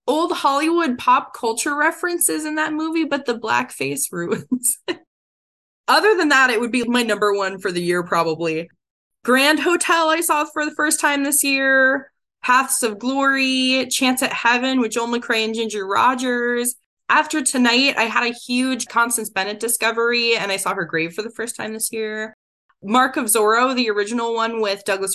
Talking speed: 180 wpm